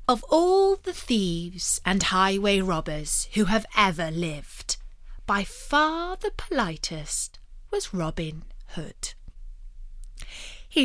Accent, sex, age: British, female, 30-49